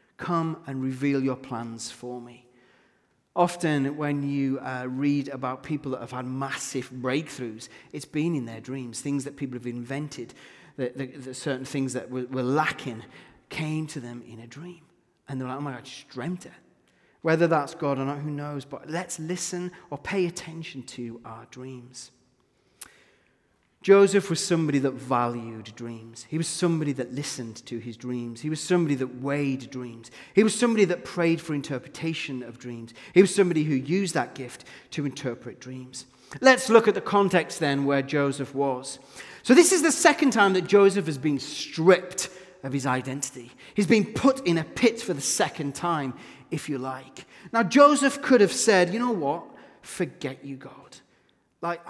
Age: 30-49